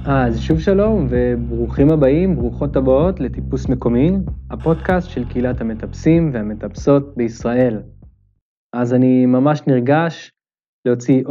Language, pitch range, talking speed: Hebrew, 125-155 Hz, 105 wpm